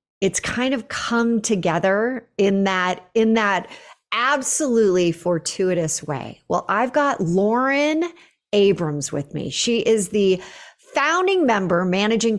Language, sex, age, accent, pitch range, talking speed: English, female, 40-59, American, 185-260 Hz, 120 wpm